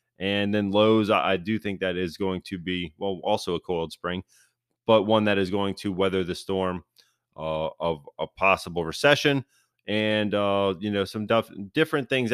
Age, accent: 20-39, American